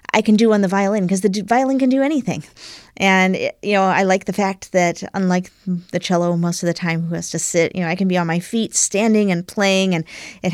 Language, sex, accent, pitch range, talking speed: English, female, American, 165-190 Hz, 260 wpm